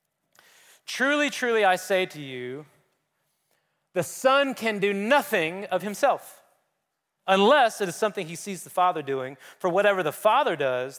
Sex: male